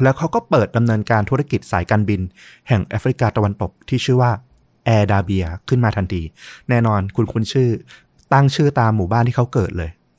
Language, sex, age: Thai, male, 20-39